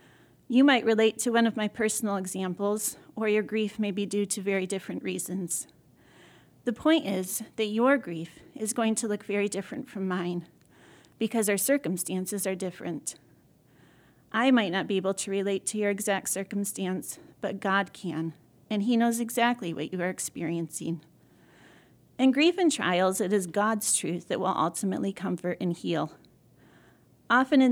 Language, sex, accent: English, female, American